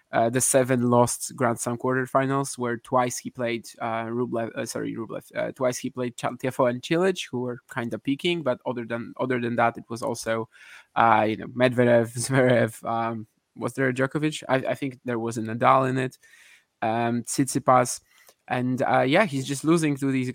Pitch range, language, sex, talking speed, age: 115-130 Hz, English, male, 195 wpm, 20-39